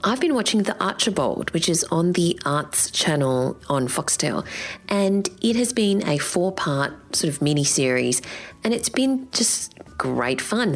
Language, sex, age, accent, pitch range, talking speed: English, female, 30-49, Australian, 135-185 Hz, 155 wpm